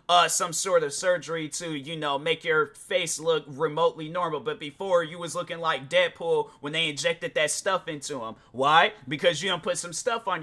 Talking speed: 205 wpm